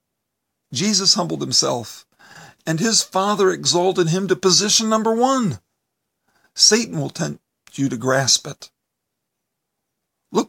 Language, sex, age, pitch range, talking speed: English, male, 50-69, 135-195 Hz, 115 wpm